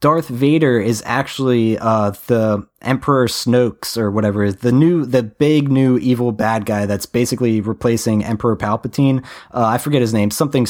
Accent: American